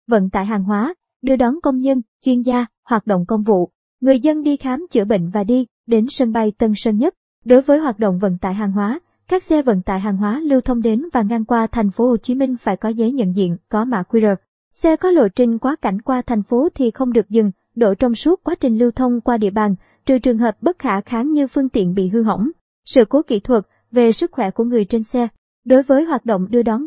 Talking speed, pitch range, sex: 250 wpm, 215-265 Hz, male